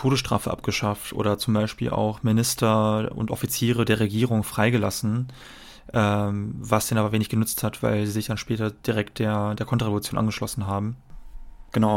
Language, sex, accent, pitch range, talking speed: German, male, German, 110-120 Hz, 155 wpm